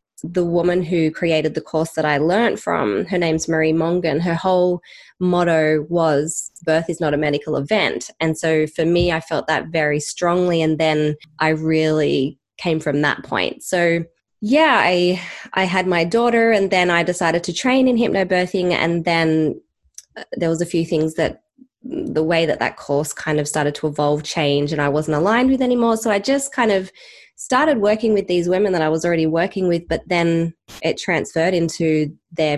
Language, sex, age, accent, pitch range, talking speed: English, female, 20-39, Australian, 155-185 Hz, 190 wpm